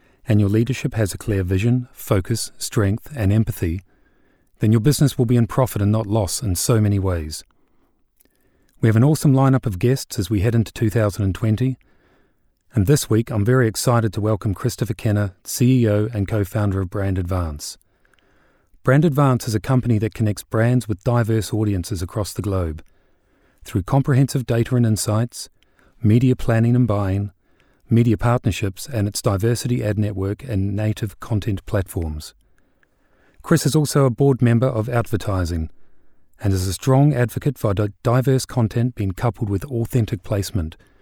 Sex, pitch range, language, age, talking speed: male, 100-125 Hz, English, 40-59, 160 wpm